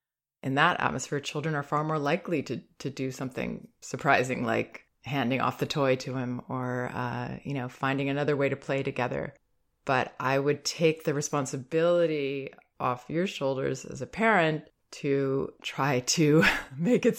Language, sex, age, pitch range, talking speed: English, female, 20-39, 135-165 Hz, 165 wpm